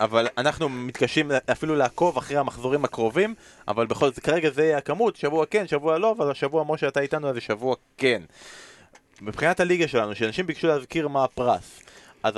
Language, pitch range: Hebrew, 115-155 Hz